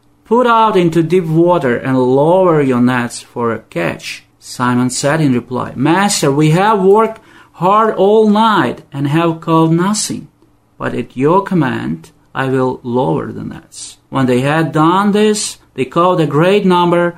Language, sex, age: Ukrainian, male, 40-59